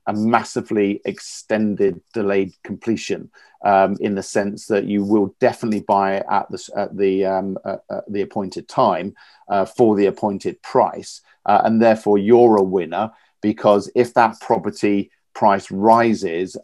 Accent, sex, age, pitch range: British, male, 50-69, 100-115 Hz